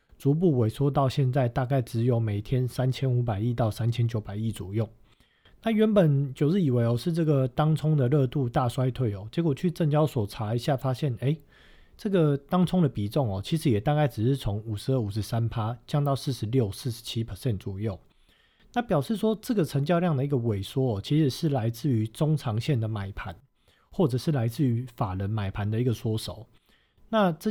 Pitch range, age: 115-150 Hz, 40-59